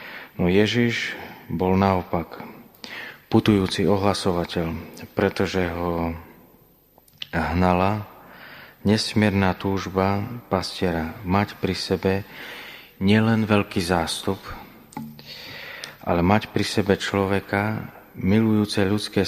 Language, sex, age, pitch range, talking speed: Slovak, male, 30-49, 85-100 Hz, 80 wpm